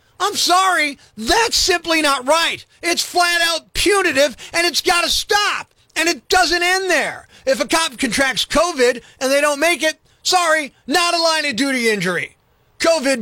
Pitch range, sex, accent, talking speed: 300-355 Hz, male, American, 175 wpm